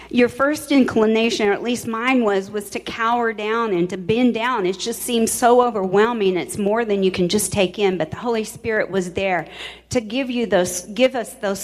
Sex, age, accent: female, 40-59, American